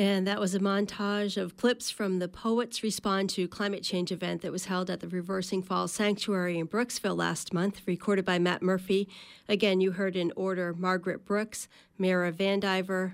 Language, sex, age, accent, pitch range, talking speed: English, female, 40-59, American, 175-200 Hz, 185 wpm